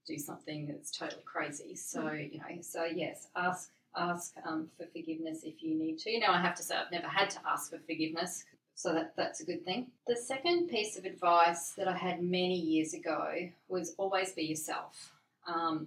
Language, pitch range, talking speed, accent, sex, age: English, 155-180 Hz, 205 wpm, Australian, female, 30-49